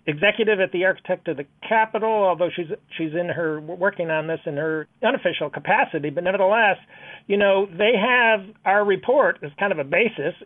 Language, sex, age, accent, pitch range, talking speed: English, male, 40-59, American, 160-210 Hz, 185 wpm